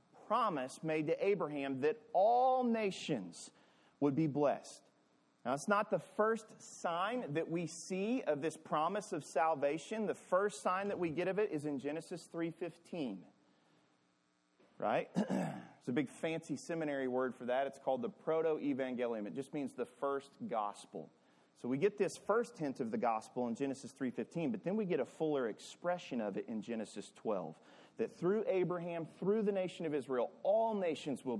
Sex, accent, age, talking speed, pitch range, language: male, American, 30-49, 170 wpm, 135-205 Hz, English